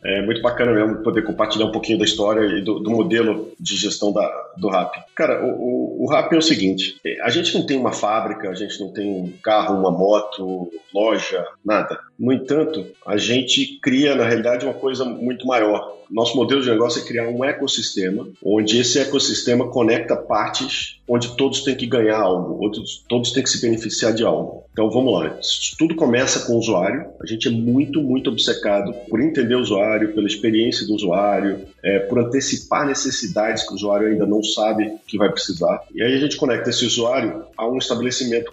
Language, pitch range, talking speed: Portuguese, 105-125 Hz, 195 wpm